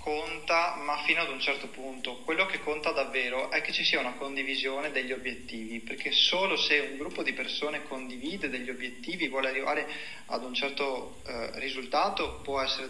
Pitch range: 135-155 Hz